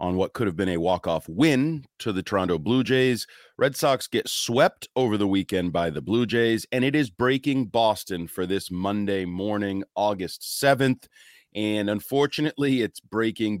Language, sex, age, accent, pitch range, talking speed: English, male, 30-49, American, 105-140 Hz, 170 wpm